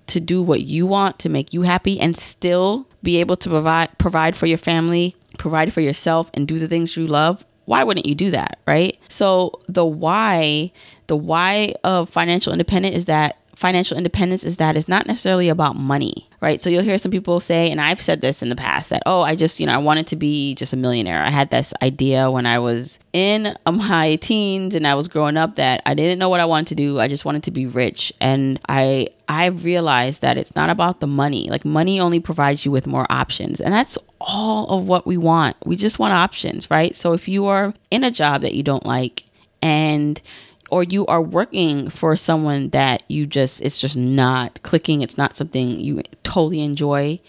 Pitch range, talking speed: 140-180 Hz, 215 wpm